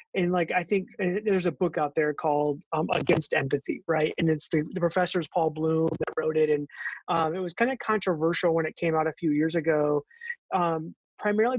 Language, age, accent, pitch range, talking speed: English, 30-49, American, 160-195 Hz, 210 wpm